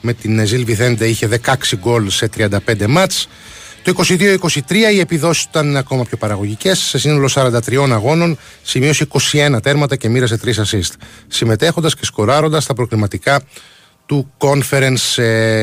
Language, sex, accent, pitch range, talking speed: Greek, male, native, 105-145 Hz, 135 wpm